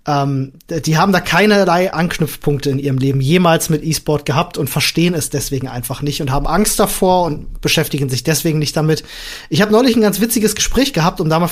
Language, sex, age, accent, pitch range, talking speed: German, male, 30-49, German, 150-195 Hz, 210 wpm